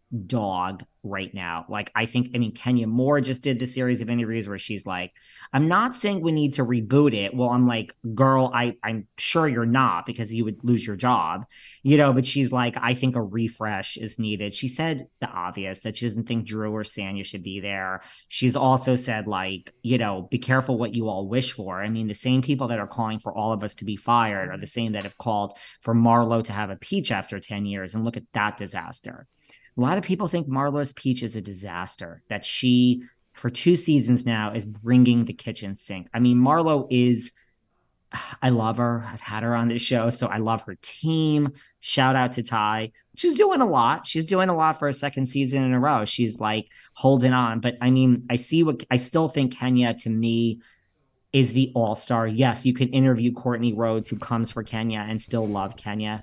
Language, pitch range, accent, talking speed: English, 110-130 Hz, American, 220 wpm